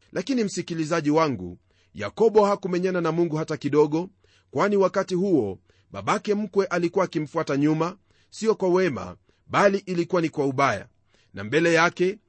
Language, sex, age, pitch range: Swahili, male, 40-59, 125-190 Hz